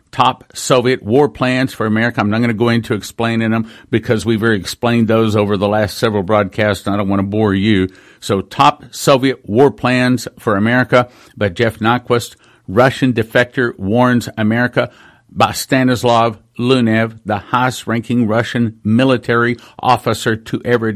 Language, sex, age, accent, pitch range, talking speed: English, male, 50-69, American, 110-130 Hz, 155 wpm